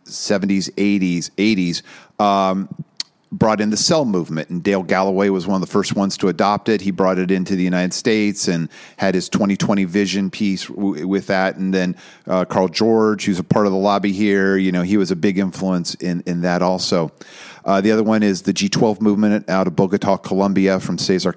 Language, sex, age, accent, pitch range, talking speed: English, male, 40-59, American, 95-110 Hz, 210 wpm